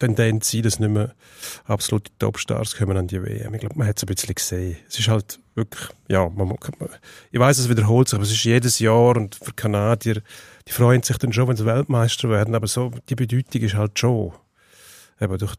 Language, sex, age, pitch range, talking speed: German, male, 40-59, 100-120 Hz, 225 wpm